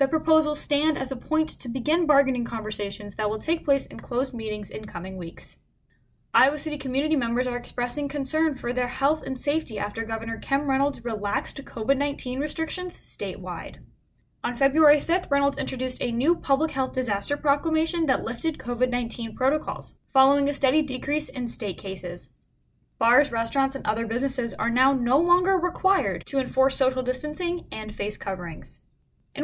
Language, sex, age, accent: English, female, 10-29, American